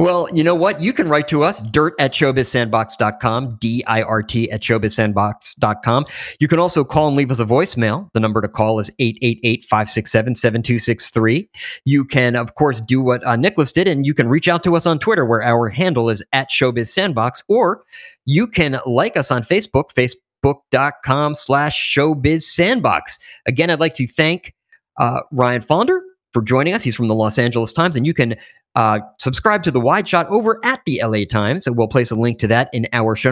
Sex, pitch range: male, 115-150 Hz